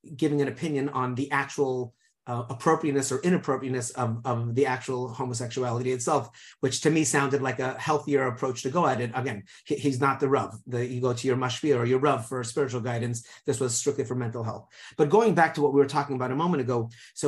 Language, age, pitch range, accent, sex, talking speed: English, 30-49, 130-150 Hz, American, male, 220 wpm